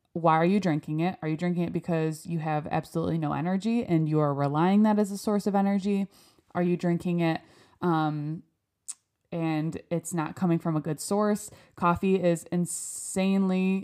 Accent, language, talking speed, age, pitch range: American, English, 180 wpm, 20-39, 160-185 Hz